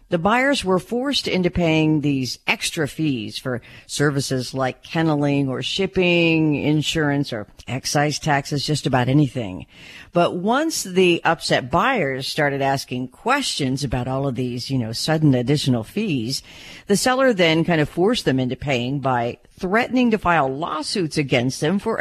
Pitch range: 130-185 Hz